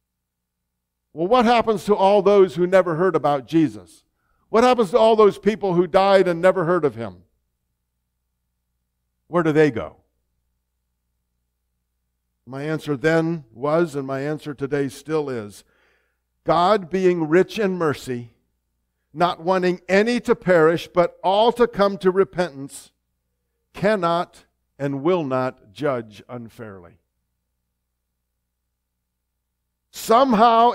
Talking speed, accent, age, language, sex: 120 wpm, American, 50-69, English, male